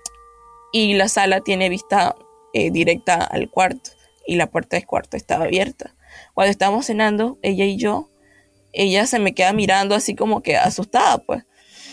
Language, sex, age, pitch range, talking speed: Spanish, female, 20-39, 180-225 Hz, 160 wpm